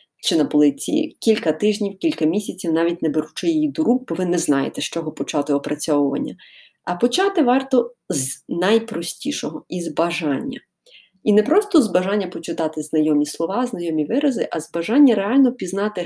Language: Ukrainian